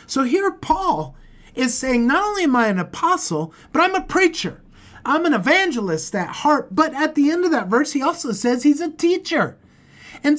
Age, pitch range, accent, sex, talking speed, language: 30-49, 195-270 Hz, American, male, 195 wpm, English